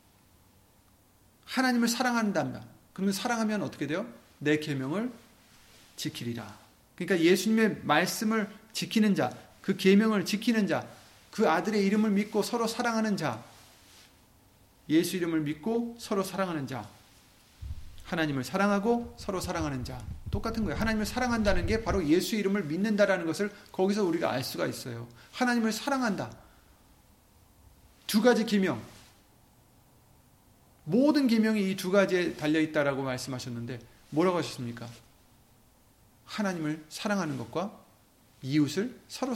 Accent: native